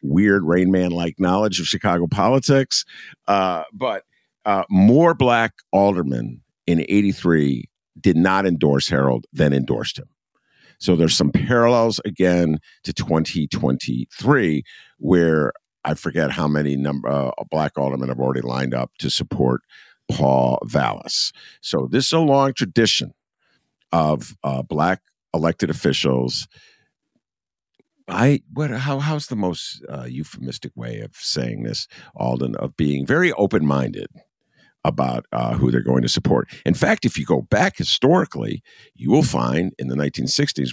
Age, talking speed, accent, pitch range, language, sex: 50-69, 140 wpm, American, 65-105 Hz, English, male